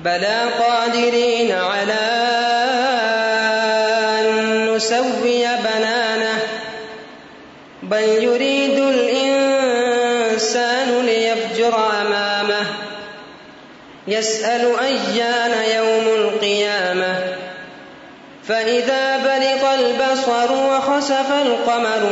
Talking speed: 55 wpm